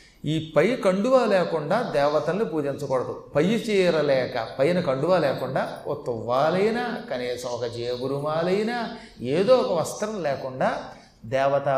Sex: male